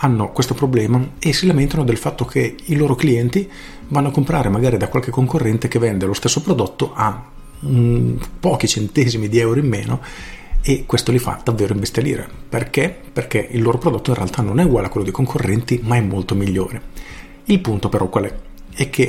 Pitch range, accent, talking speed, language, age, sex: 105-135 Hz, native, 195 wpm, Italian, 40-59, male